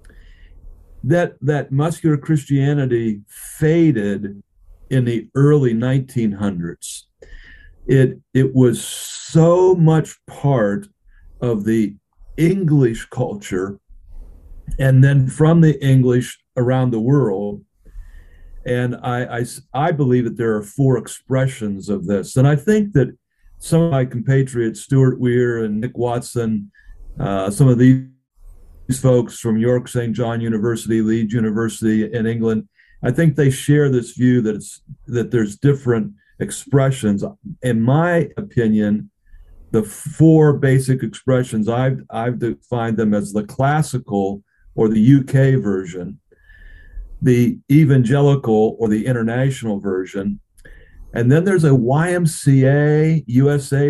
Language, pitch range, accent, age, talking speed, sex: English, 105-140 Hz, American, 50-69, 120 wpm, male